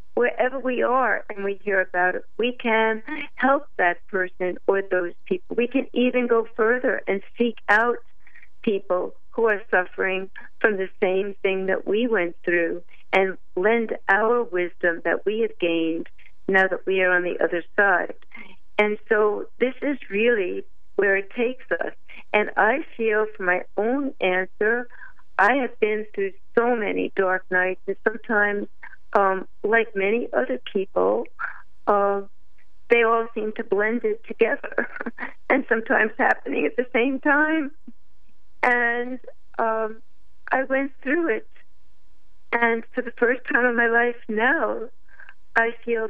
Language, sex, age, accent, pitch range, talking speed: English, female, 50-69, American, 195-245 Hz, 150 wpm